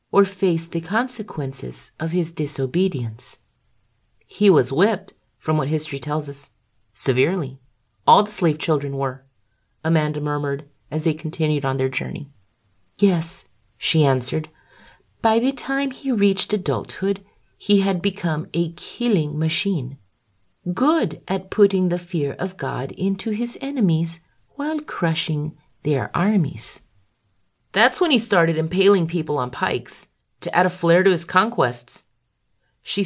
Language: English